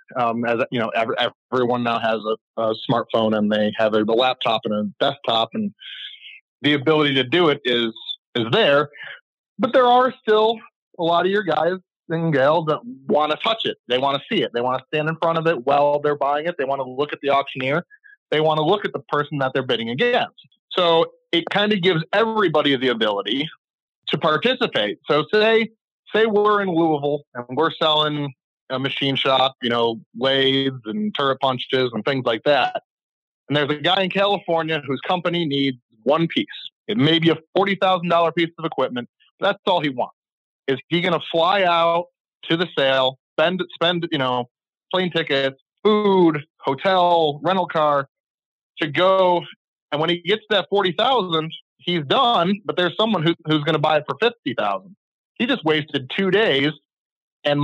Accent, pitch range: American, 135-185 Hz